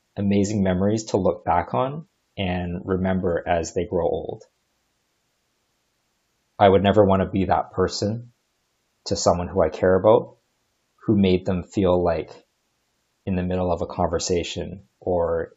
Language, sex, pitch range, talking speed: English, male, 90-100 Hz, 145 wpm